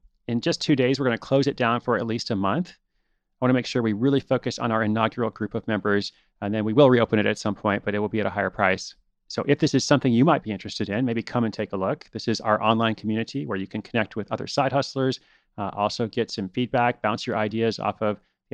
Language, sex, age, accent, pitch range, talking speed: English, male, 30-49, American, 110-130 Hz, 280 wpm